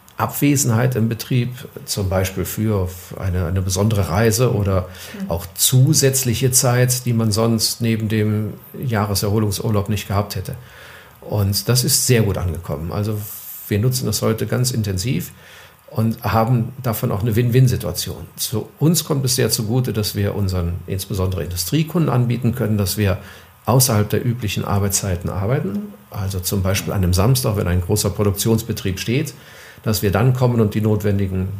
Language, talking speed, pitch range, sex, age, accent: German, 150 wpm, 105-125 Hz, male, 50-69, German